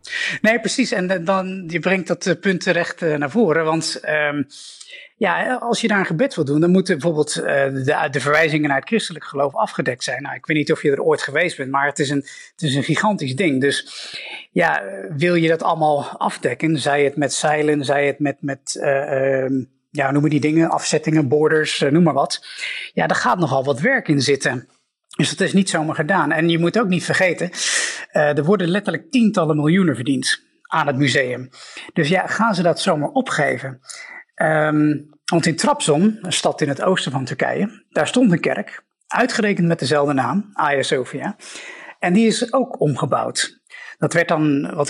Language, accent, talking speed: Dutch, Dutch, 195 wpm